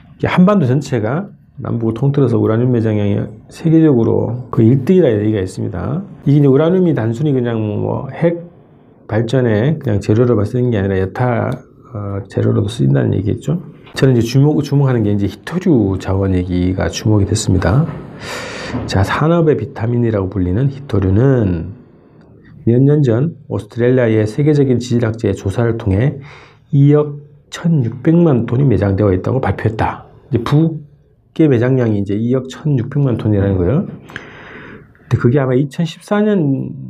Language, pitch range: Korean, 110-145 Hz